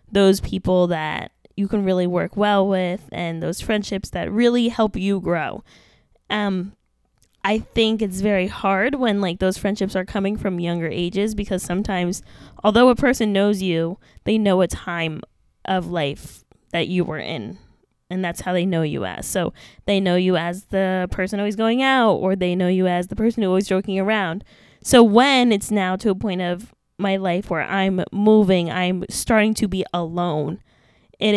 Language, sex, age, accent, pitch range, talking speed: English, female, 10-29, American, 180-215 Hz, 185 wpm